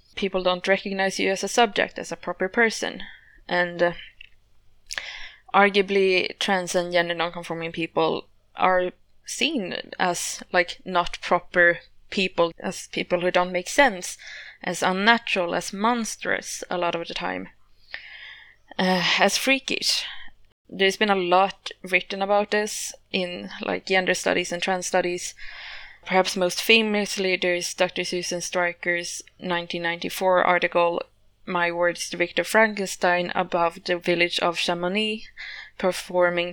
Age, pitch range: 20-39, 175-195 Hz